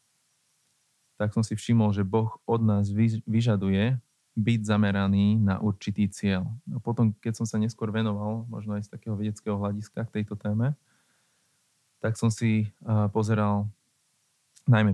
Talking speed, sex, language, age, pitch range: 145 wpm, male, Slovak, 20-39, 105-125 Hz